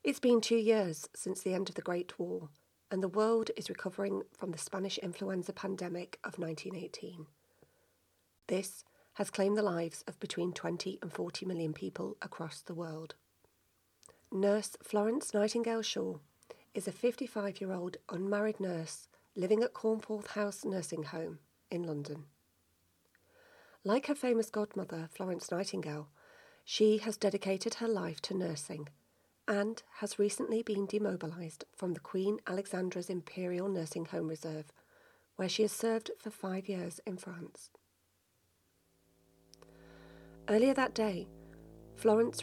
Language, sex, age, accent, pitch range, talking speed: English, female, 40-59, British, 165-215 Hz, 135 wpm